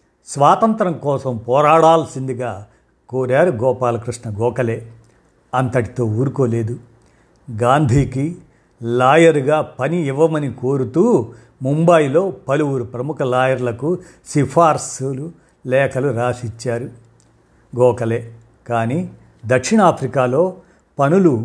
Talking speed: 65 wpm